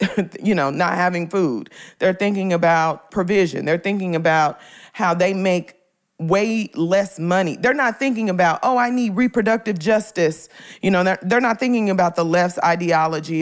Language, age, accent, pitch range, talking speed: English, 40-59, American, 175-230 Hz, 165 wpm